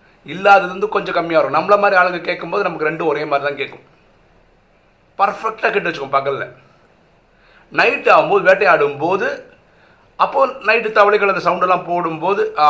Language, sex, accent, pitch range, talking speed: Tamil, male, native, 120-205 Hz, 135 wpm